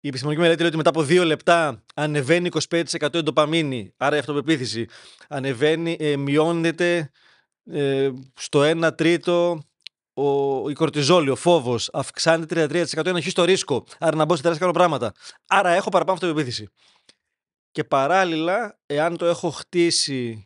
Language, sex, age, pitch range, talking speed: Greek, male, 20-39, 135-175 Hz, 135 wpm